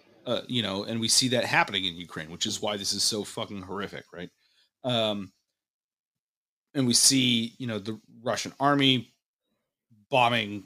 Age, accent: 30-49, American